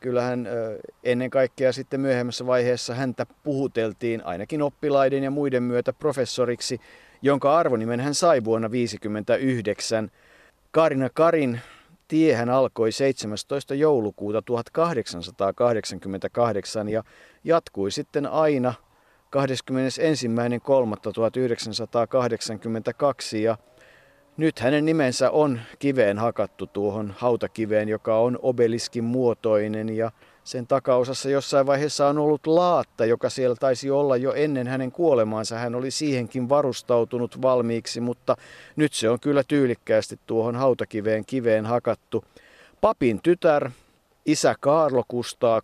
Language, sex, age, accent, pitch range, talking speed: Finnish, male, 50-69, native, 115-135 Hz, 105 wpm